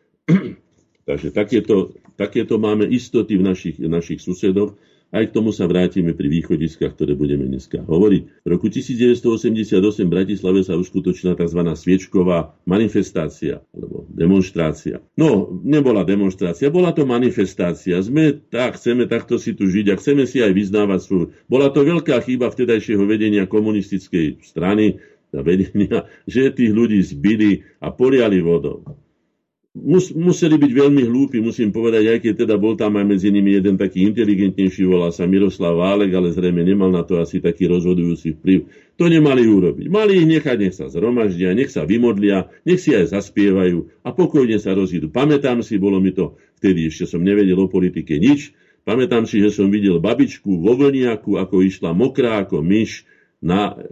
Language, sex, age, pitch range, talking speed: Slovak, male, 50-69, 90-120 Hz, 160 wpm